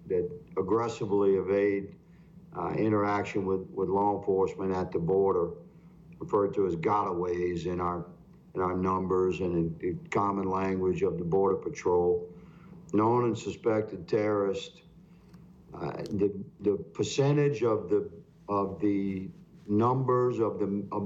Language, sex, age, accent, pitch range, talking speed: English, male, 50-69, American, 100-120 Hz, 130 wpm